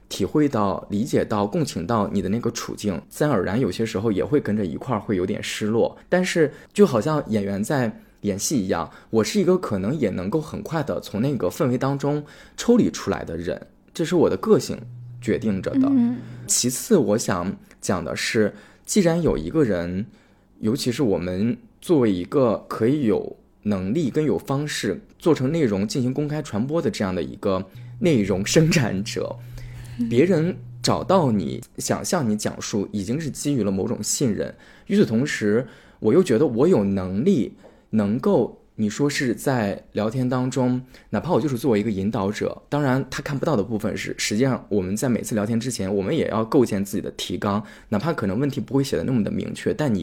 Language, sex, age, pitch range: Chinese, male, 20-39, 105-150 Hz